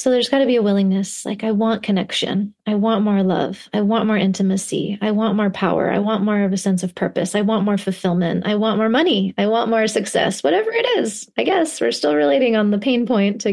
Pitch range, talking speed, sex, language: 195-235 Hz, 250 wpm, female, English